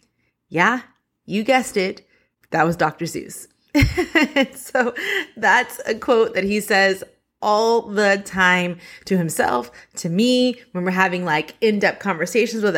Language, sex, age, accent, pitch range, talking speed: English, female, 20-39, American, 175-255 Hz, 135 wpm